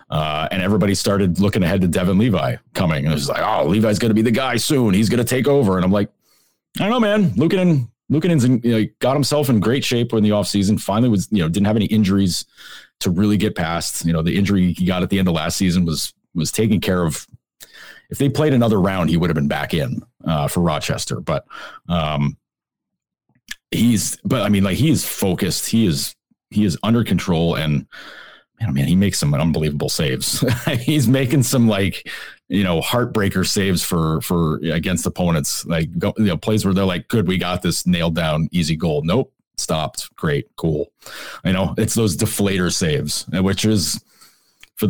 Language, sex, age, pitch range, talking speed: English, male, 30-49, 90-135 Hz, 210 wpm